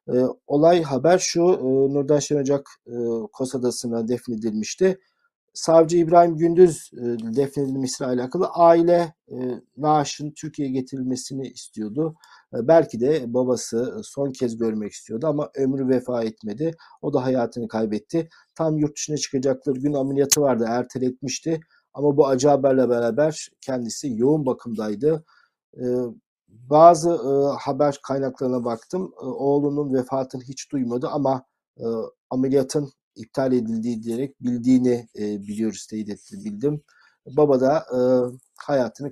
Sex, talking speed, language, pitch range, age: male, 115 wpm, Turkish, 120-150 Hz, 50-69